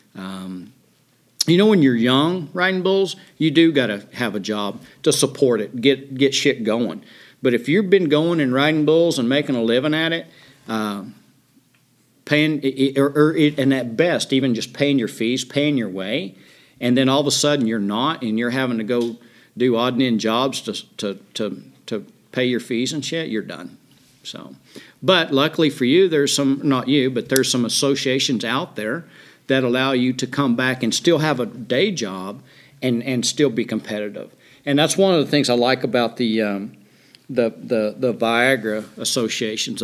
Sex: male